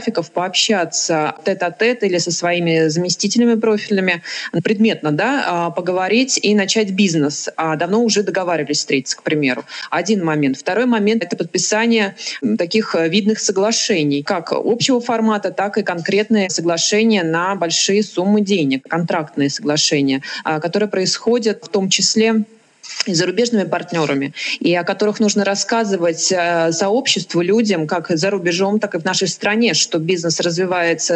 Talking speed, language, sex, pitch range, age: 130 wpm, Russian, female, 170-215 Hz, 20-39